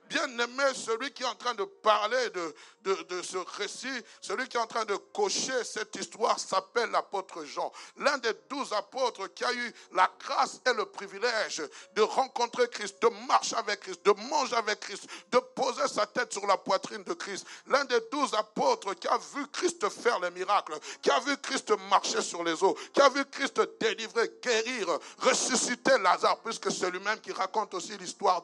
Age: 60-79